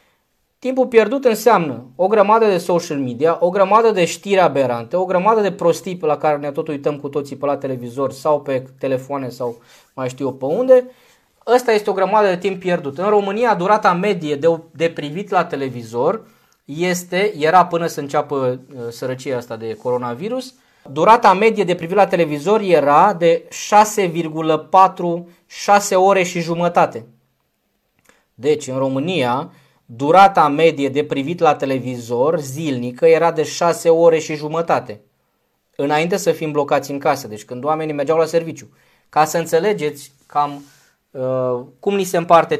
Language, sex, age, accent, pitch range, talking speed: Romanian, male, 20-39, native, 145-195 Hz, 155 wpm